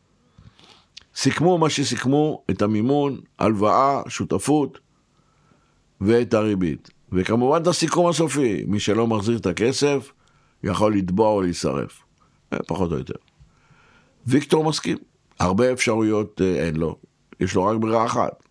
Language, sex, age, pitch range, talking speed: Hebrew, male, 60-79, 100-145 Hz, 115 wpm